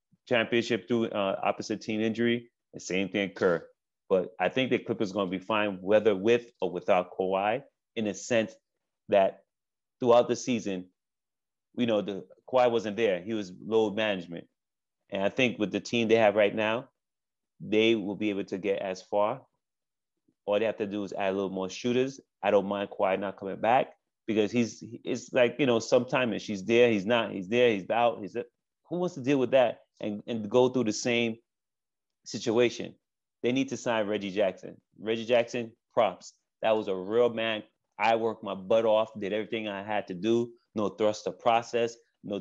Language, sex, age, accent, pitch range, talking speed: English, male, 30-49, American, 100-120 Hz, 195 wpm